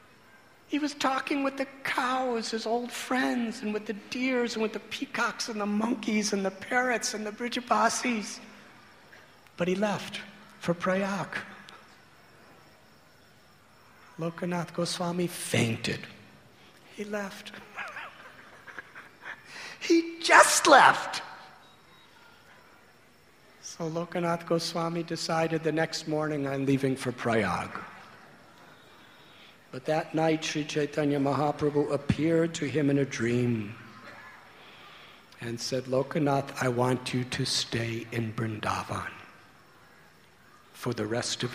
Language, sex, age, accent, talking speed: English, male, 50-69, American, 110 wpm